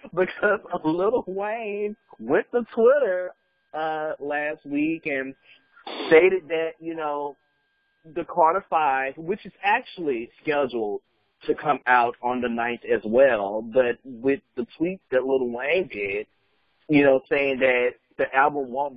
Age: 40-59